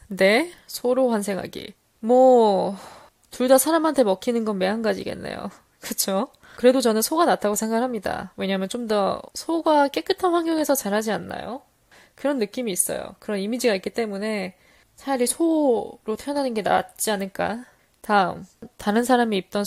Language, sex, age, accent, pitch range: Korean, female, 10-29, native, 205-255 Hz